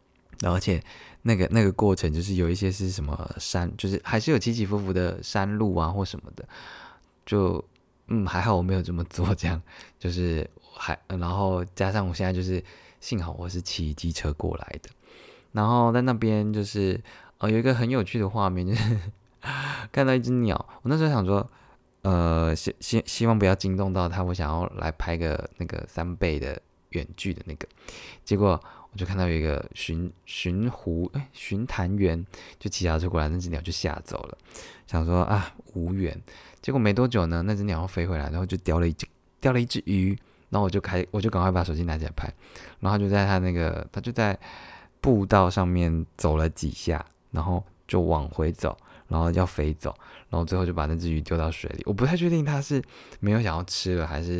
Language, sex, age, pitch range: Chinese, male, 20-39, 85-105 Hz